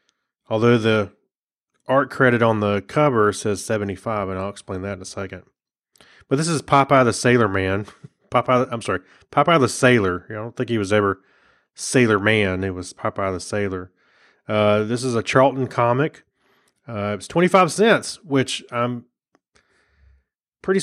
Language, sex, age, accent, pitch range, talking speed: English, male, 30-49, American, 105-125 Hz, 160 wpm